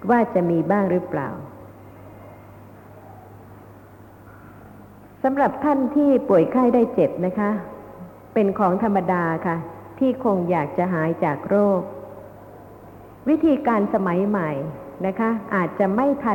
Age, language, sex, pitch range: 60-79, Thai, female, 160-225 Hz